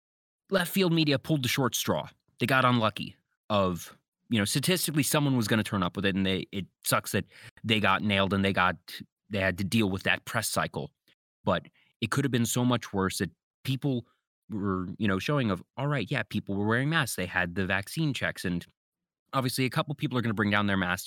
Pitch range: 100-140 Hz